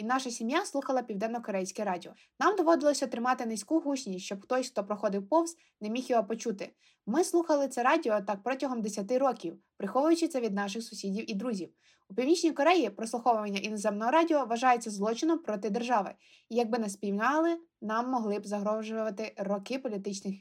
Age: 20-39